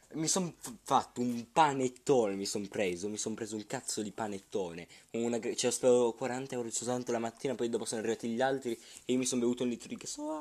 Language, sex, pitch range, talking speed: Italian, male, 100-125 Hz, 240 wpm